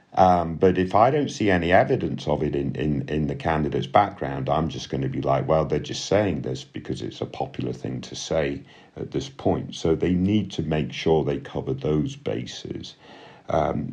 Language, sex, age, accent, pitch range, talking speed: English, male, 50-69, British, 75-95 Hz, 205 wpm